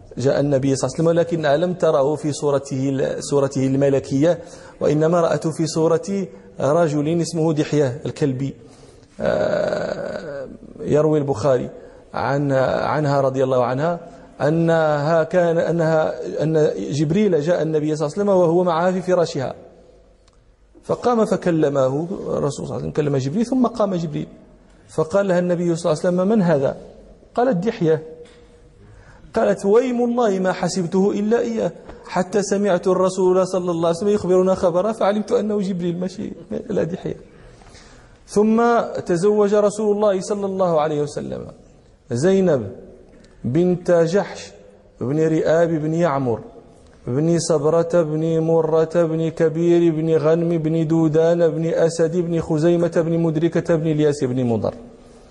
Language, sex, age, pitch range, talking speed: Danish, male, 40-59, 155-185 Hz, 130 wpm